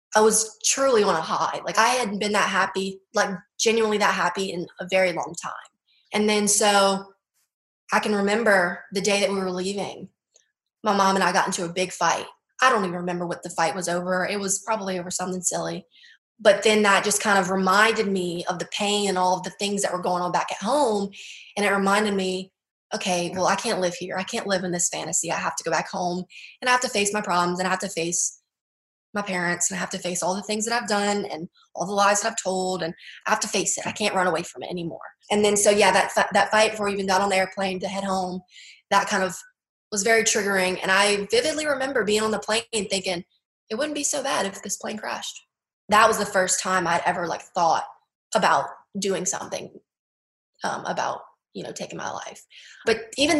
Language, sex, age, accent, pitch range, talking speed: English, female, 20-39, American, 185-215 Hz, 235 wpm